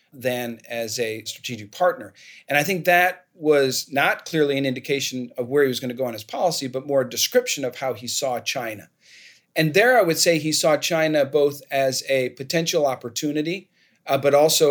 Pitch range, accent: 125-155 Hz, American